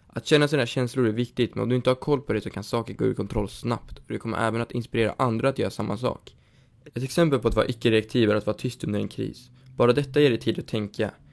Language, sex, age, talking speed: Swedish, male, 20-39, 275 wpm